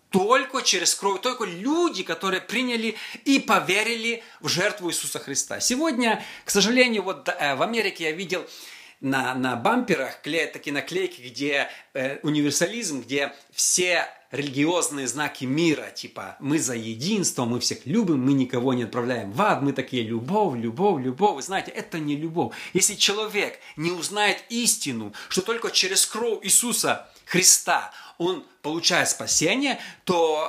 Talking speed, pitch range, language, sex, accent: 145 wpm, 145-215 Hz, Russian, male, native